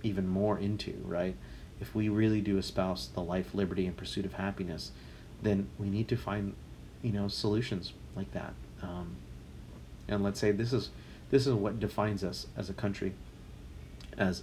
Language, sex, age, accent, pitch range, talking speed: English, male, 40-59, American, 90-110 Hz, 170 wpm